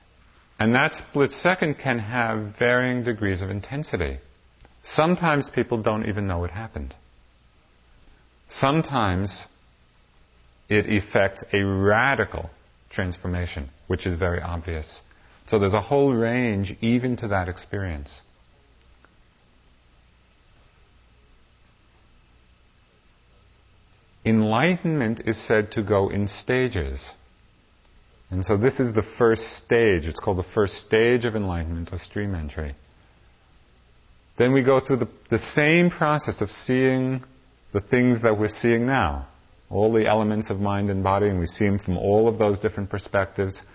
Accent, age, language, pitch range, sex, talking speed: American, 40-59, English, 85-115 Hz, male, 130 wpm